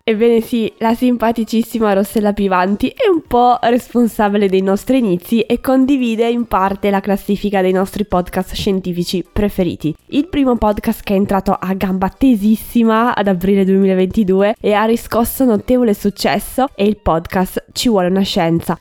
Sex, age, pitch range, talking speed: female, 20-39, 190-230 Hz, 155 wpm